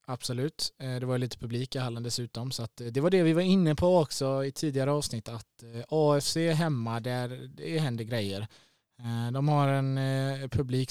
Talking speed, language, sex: 175 wpm, Swedish, male